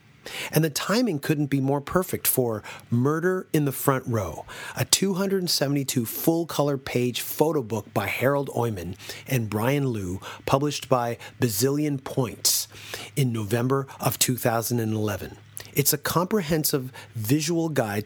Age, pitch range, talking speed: 30-49, 115-145 Hz, 125 wpm